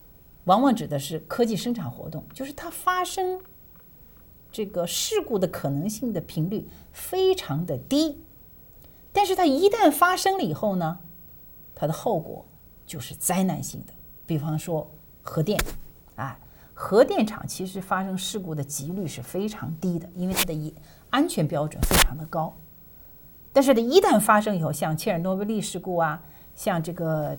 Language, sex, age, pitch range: English, female, 40-59, 155-220 Hz